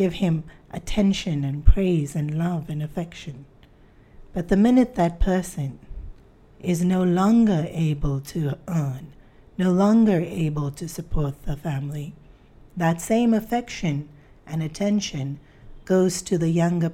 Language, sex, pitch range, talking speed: English, female, 150-200 Hz, 130 wpm